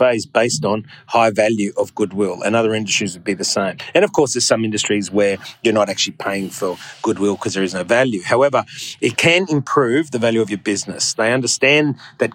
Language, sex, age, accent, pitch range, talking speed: English, male, 30-49, Australian, 105-135 Hz, 215 wpm